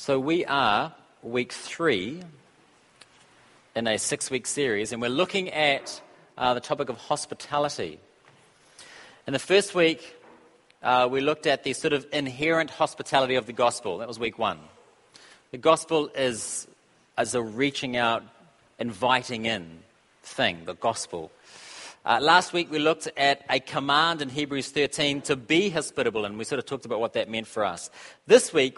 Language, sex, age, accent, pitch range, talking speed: English, male, 40-59, Australian, 130-170 Hz, 160 wpm